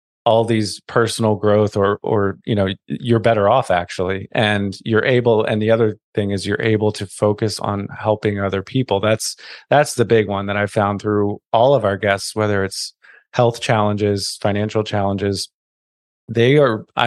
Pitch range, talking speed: 100-110 Hz, 170 wpm